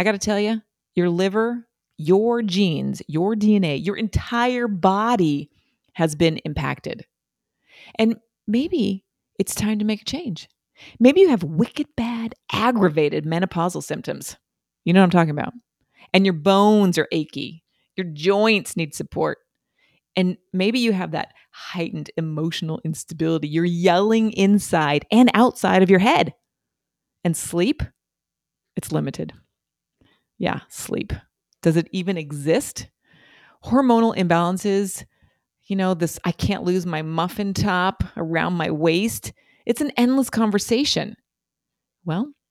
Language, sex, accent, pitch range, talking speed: English, female, American, 165-225 Hz, 130 wpm